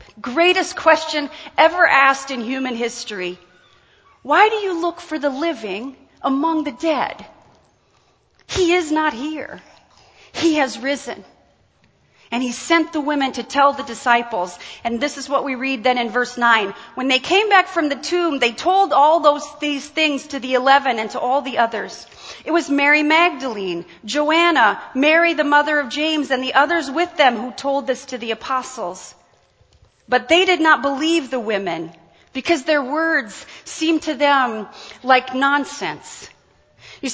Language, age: English, 40-59